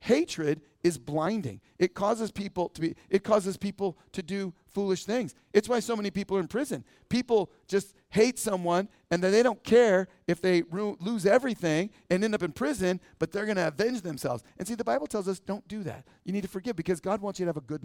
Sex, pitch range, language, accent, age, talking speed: male, 170-205 Hz, English, American, 40-59, 230 wpm